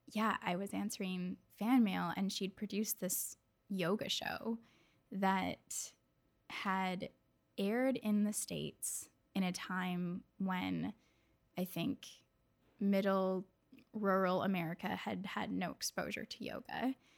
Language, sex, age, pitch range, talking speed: English, female, 10-29, 190-230 Hz, 115 wpm